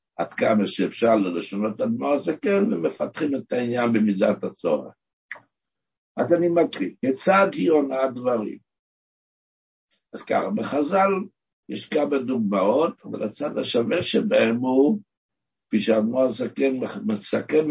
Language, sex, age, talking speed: Hebrew, male, 60-79, 110 wpm